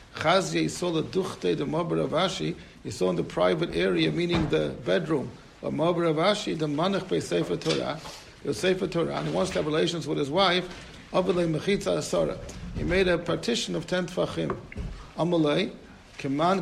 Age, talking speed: 60-79, 170 wpm